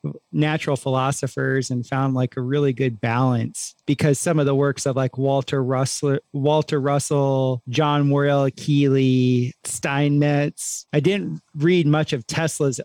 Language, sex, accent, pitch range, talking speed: English, male, American, 130-150 Hz, 140 wpm